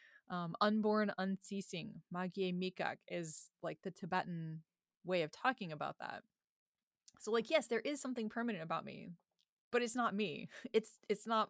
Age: 20-39